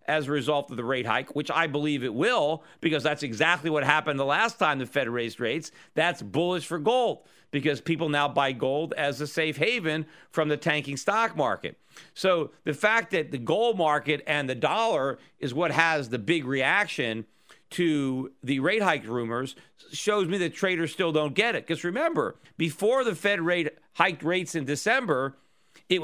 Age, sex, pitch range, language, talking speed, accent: 50-69, male, 145-175 Hz, English, 190 wpm, American